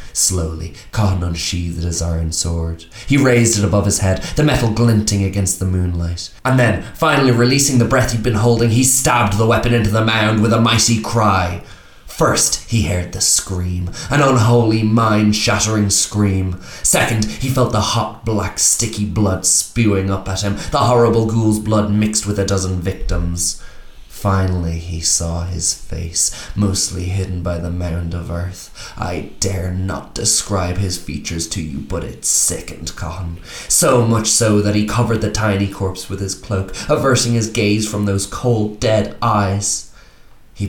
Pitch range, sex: 90-110 Hz, male